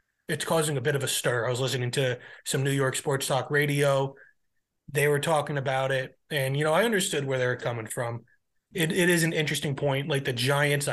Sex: male